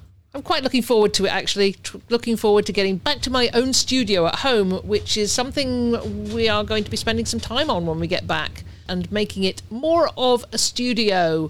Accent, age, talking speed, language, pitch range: British, 50-69, 215 wpm, English, 160-215 Hz